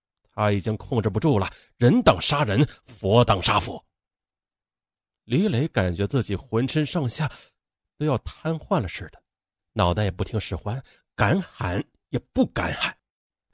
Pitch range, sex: 95-150 Hz, male